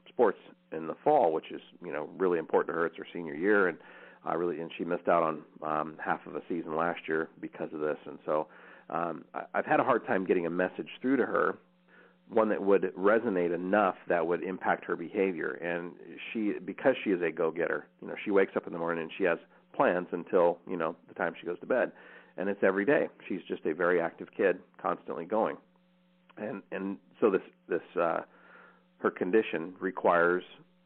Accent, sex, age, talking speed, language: American, male, 40-59, 210 wpm, English